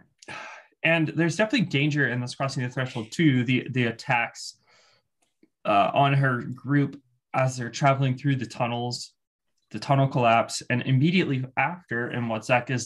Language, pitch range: English, 125-155 Hz